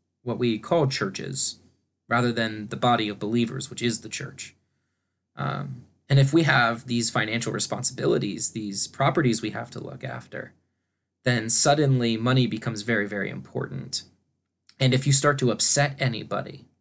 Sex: male